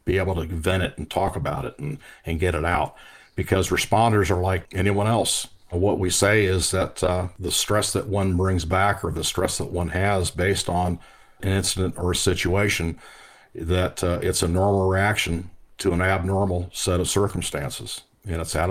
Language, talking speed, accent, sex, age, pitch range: English, 190 wpm, American, male, 50-69, 90-105 Hz